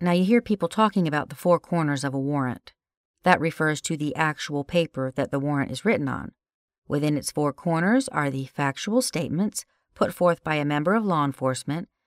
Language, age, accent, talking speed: English, 50-69, American, 200 wpm